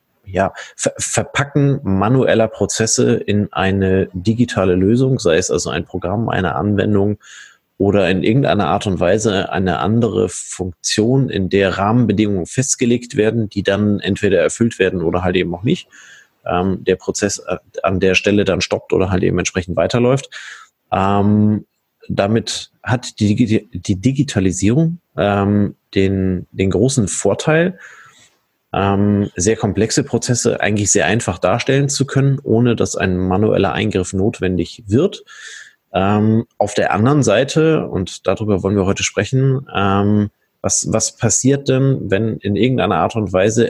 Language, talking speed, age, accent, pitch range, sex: German, 140 wpm, 30-49, German, 95-120 Hz, male